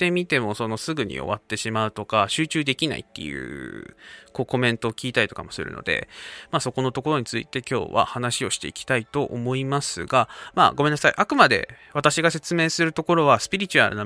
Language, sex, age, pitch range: Japanese, male, 20-39, 115-165 Hz